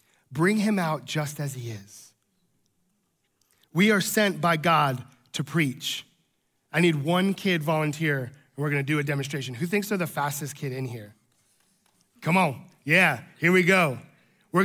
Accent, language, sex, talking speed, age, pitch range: American, English, male, 165 wpm, 30-49, 145-200 Hz